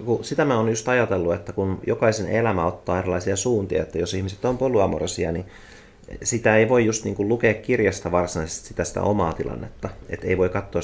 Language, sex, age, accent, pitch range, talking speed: Finnish, male, 30-49, native, 85-110 Hz, 190 wpm